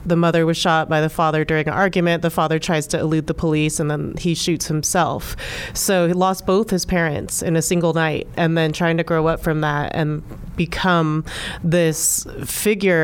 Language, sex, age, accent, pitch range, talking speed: English, female, 30-49, American, 160-185 Hz, 205 wpm